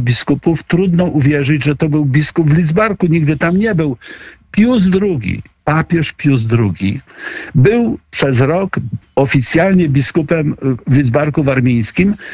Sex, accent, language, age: male, native, Polish, 50-69